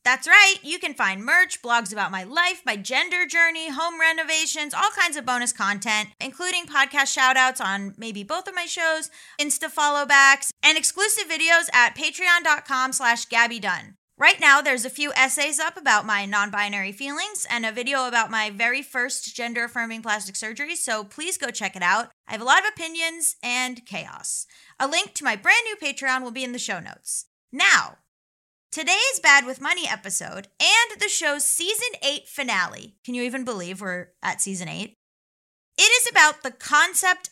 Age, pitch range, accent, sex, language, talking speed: 20-39, 230-330 Hz, American, female, English, 180 wpm